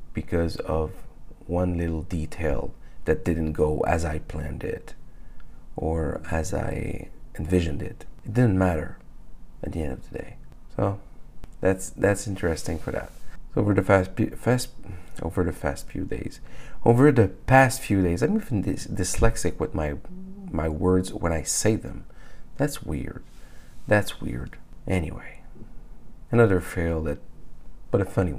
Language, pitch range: English, 85-105 Hz